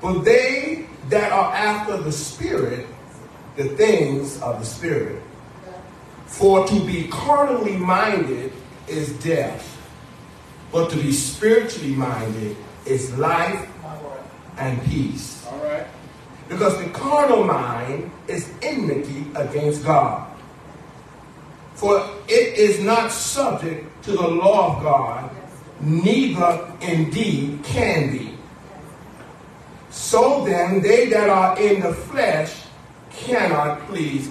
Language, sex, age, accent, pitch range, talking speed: English, male, 40-59, American, 145-225 Hz, 105 wpm